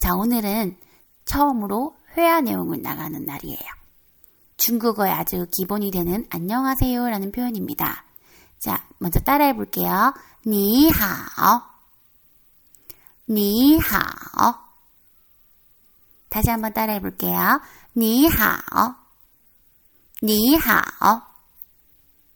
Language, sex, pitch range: Korean, female, 200-280 Hz